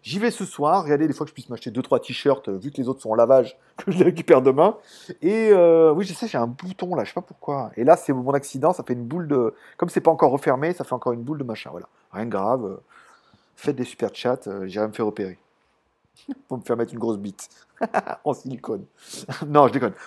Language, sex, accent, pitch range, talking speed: French, male, French, 130-205 Hz, 250 wpm